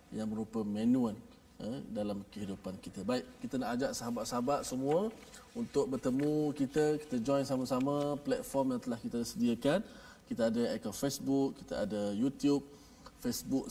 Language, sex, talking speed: Malayalam, male, 140 wpm